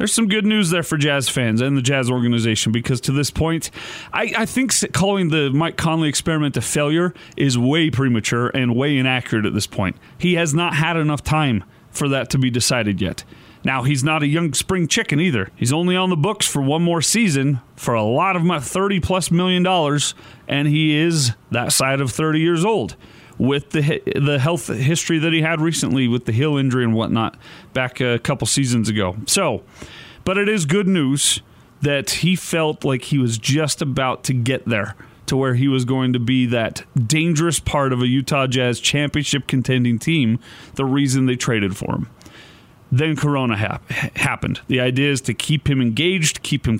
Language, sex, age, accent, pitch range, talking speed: English, male, 30-49, American, 125-165 Hz, 195 wpm